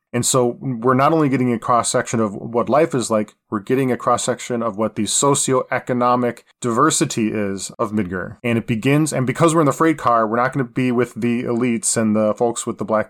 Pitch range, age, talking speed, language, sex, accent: 110-140 Hz, 20-39, 225 wpm, English, male, American